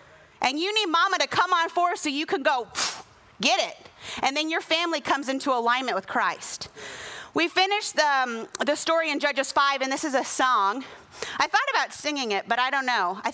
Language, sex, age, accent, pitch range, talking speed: English, female, 30-49, American, 240-315 Hz, 215 wpm